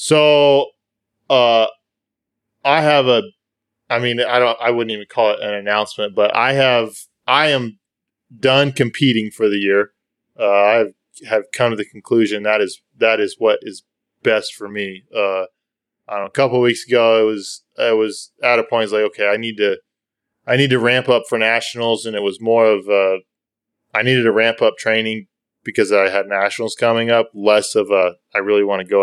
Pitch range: 105-125 Hz